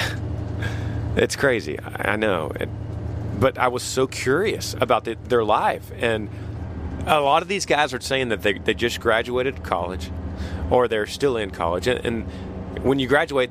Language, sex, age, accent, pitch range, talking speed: English, male, 30-49, American, 90-115 Hz, 165 wpm